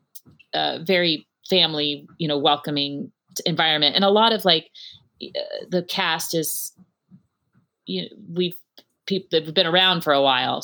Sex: female